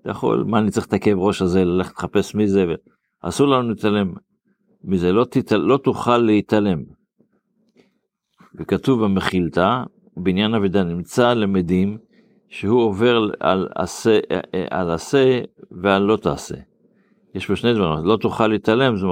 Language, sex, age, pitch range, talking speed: Hebrew, male, 50-69, 90-115 Hz, 145 wpm